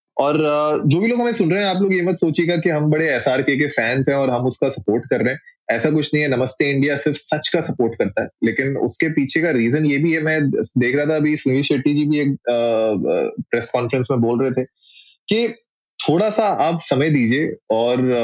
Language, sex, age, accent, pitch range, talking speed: Hindi, male, 20-39, native, 125-165 Hz, 230 wpm